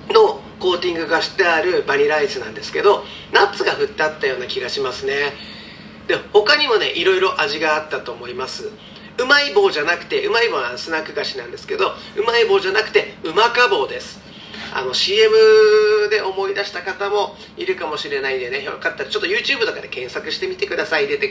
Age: 40-59